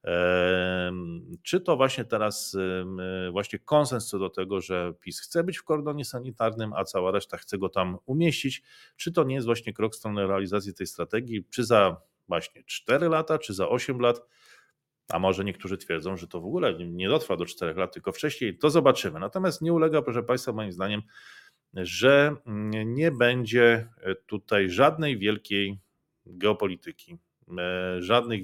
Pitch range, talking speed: 95-135 Hz, 160 wpm